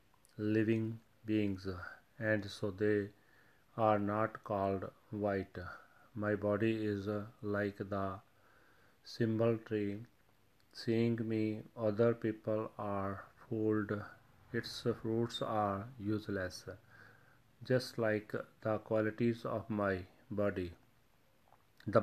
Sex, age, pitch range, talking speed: male, 40-59, 100-115 Hz, 95 wpm